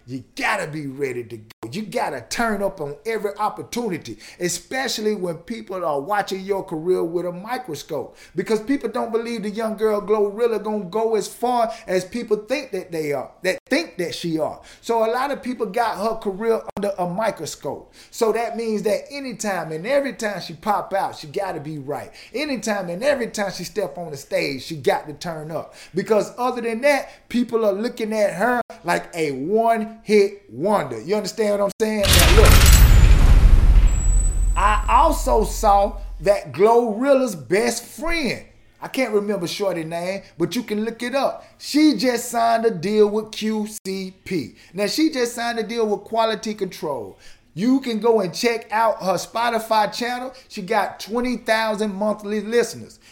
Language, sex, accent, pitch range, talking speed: English, male, American, 185-230 Hz, 180 wpm